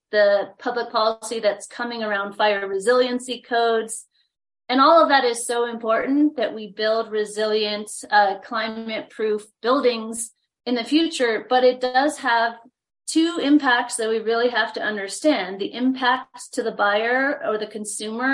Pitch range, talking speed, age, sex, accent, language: 215-255 Hz, 155 wpm, 30-49, female, American, English